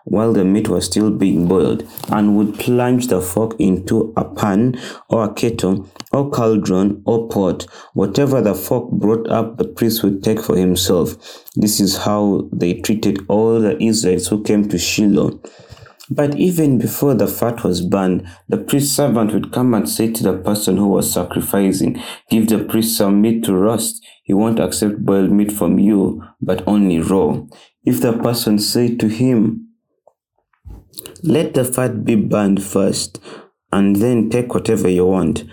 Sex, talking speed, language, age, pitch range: male, 170 wpm, English, 30-49, 95-115 Hz